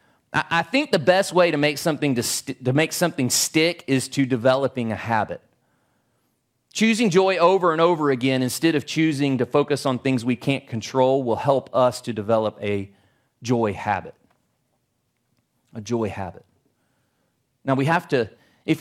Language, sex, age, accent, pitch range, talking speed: English, male, 30-49, American, 125-190 Hz, 165 wpm